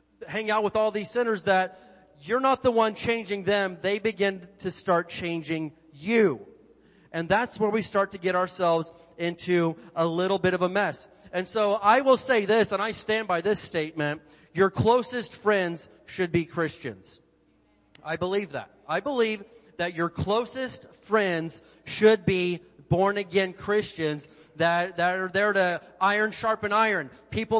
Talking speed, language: 165 wpm, English